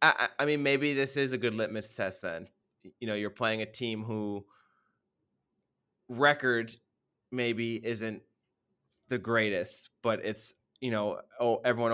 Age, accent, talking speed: 20-39, American, 140 wpm